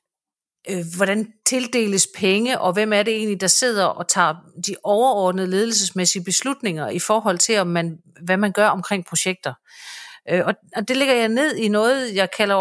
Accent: native